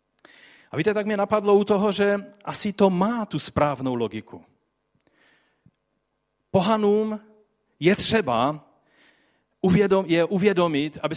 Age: 40-59